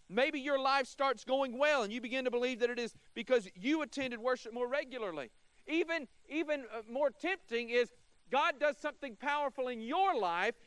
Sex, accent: male, American